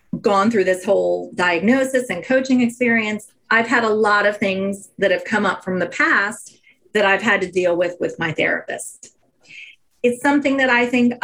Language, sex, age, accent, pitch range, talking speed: English, female, 40-59, American, 195-235 Hz, 185 wpm